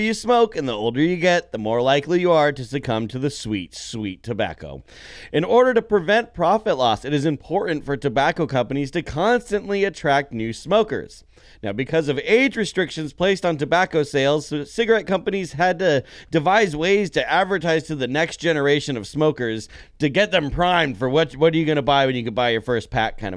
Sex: male